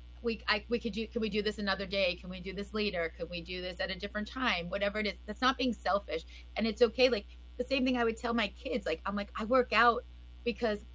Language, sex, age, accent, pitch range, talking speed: English, female, 30-49, American, 185-220 Hz, 275 wpm